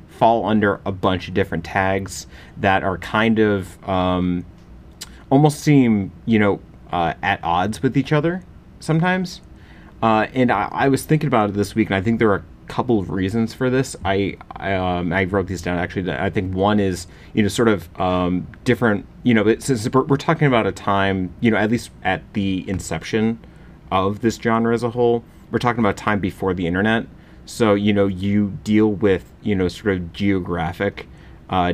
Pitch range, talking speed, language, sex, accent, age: 95-115 Hz, 200 wpm, English, male, American, 30-49